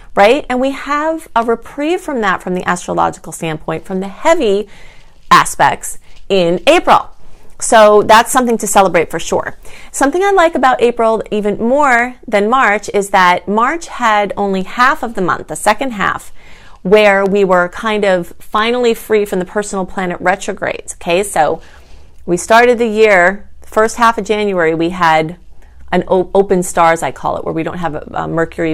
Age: 30-49